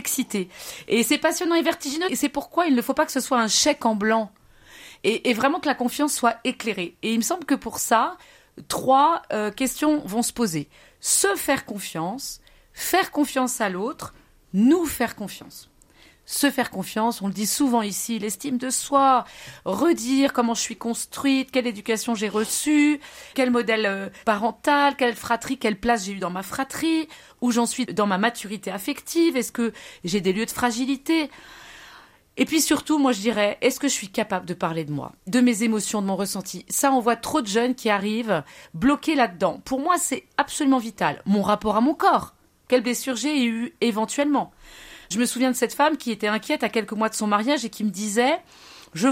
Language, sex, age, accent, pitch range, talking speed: French, female, 30-49, French, 215-275 Hz, 200 wpm